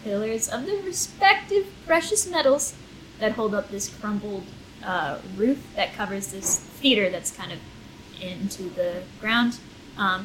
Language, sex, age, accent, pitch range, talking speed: English, female, 10-29, American, 190-250 Hz, 140 wpm